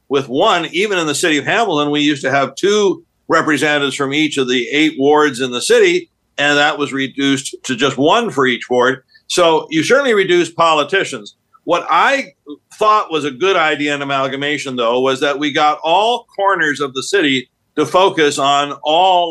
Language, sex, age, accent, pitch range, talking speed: English, male, 50-69, American, 135-160 Hz, 190 wpm